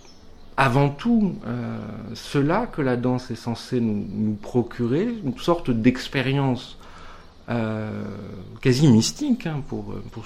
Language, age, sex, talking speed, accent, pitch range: French, 50-69, male, 125 wpm, French, 100-135 Hz